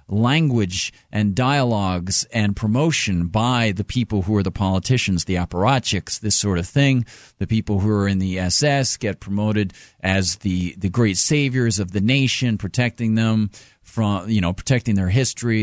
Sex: male